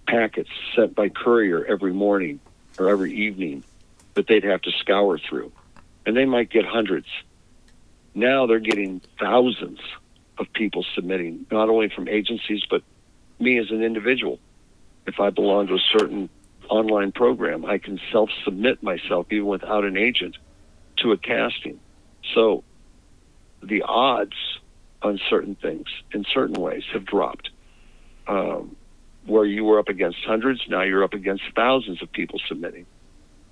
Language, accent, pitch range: English, American, 95-115 Hz